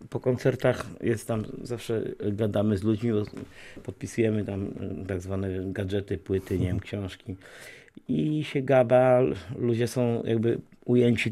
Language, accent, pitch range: Polish, native, 105-125 Hz